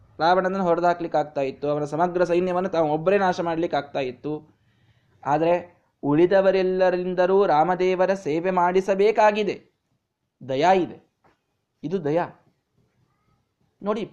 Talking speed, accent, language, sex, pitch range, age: 100 wpm, native, Kannada, male, 165-245 Hz, 20-39